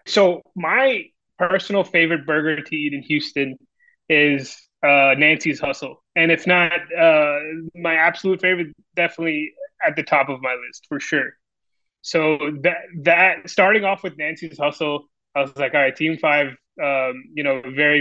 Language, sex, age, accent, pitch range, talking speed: English, male, 20-39, American, 140-165 Hz, 160 wpm